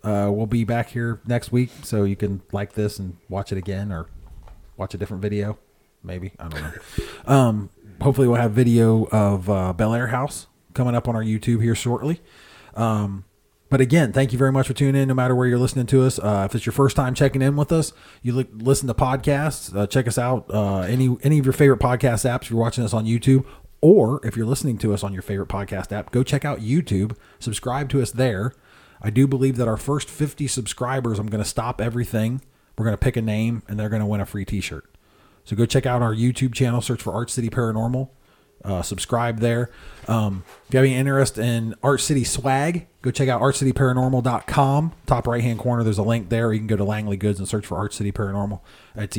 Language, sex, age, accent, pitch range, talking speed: English, male, 30-49, American, 105-130 Hz, 230 wpm